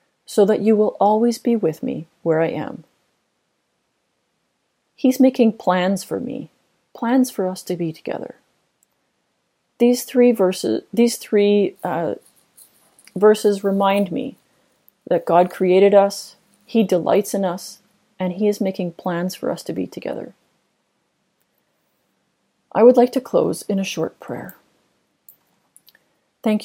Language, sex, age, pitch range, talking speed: English, female, 40-59, 180-215 Hz, 135 wpm